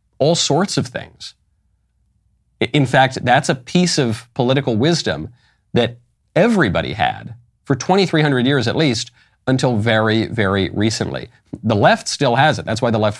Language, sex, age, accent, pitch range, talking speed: English, male, 40-59, American, 105-135 Hz, 150 wpm